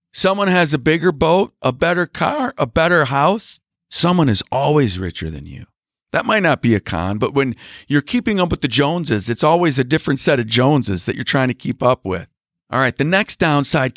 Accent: American